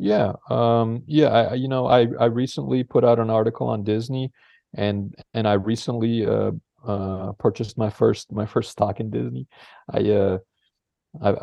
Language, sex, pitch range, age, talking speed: English, male, 105-125 Hz, 30-49, 160 wpm